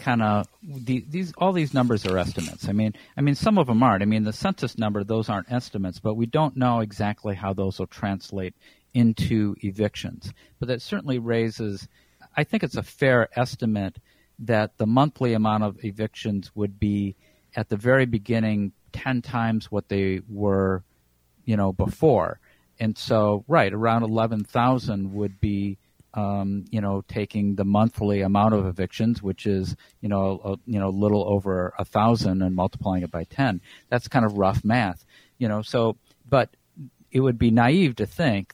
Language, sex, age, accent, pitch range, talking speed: English, male, 50-69, American, 100-120 Hz, 175 wpm